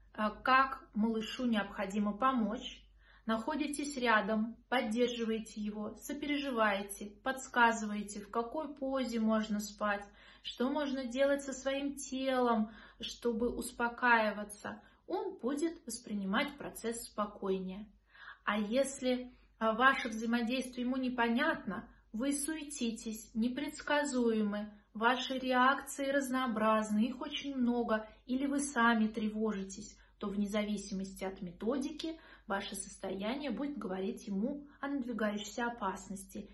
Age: 20-39